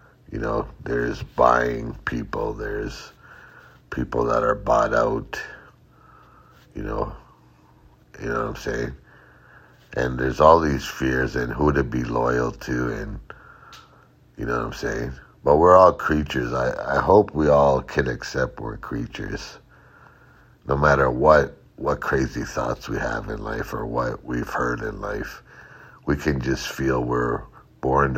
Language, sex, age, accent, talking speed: English, male, 60-79, American, 150 wpm